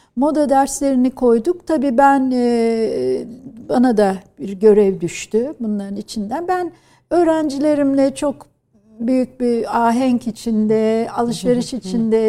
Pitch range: 195-250 Hz